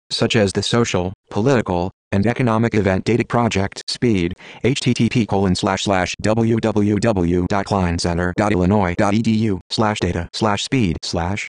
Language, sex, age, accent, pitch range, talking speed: English, male, 30-49, American, 95-115 Hz, 110 wpm